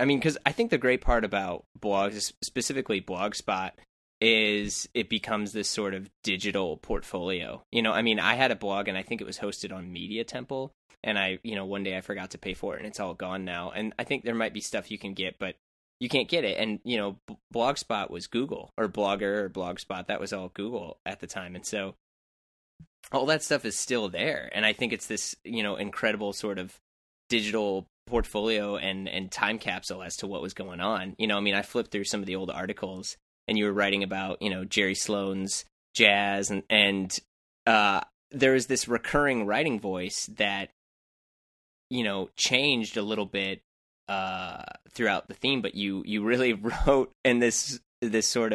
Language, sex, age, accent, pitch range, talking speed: English, male, 20-39, American, 95-115 Hz, 210 wpm